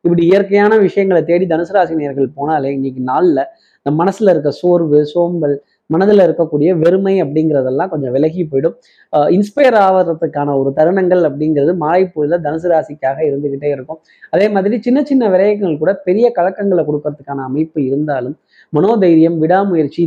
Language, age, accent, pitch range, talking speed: Tamil, 20-39, native, 145-185 Hz, 135 wpm